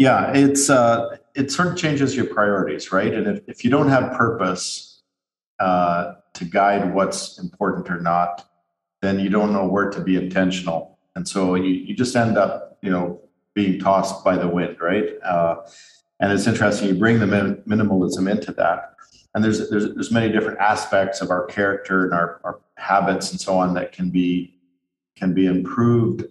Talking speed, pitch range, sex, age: 185 wpm, 90-105 Hz, male, 50-69